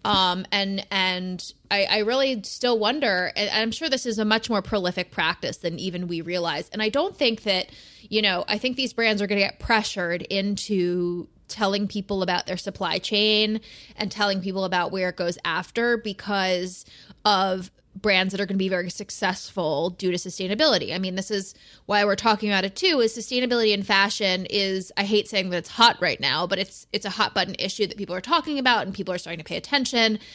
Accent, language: American, English